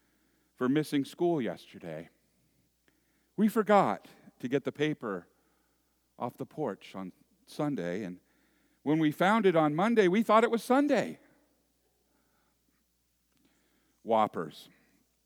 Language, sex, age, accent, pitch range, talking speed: English, male, 50-69, American, 115-190 Hz, 110 wpm